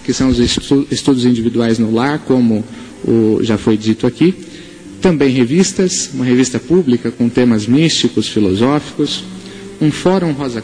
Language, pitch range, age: Portuguese, 115-135 Hz, 40-59